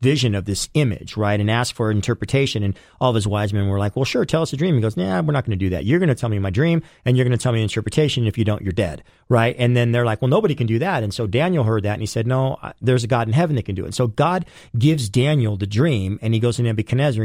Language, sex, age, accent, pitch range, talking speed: English, male, 40-59, American, 115-145 Hz, 320 wpm